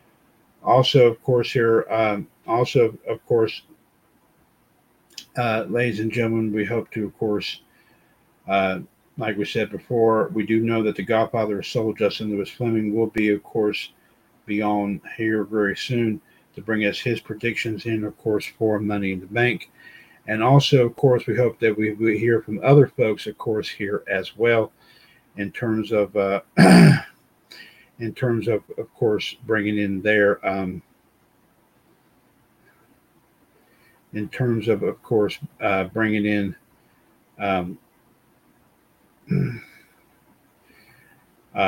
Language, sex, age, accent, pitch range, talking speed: English, male, 50-69, American, 105-115 Hz, 135 wpm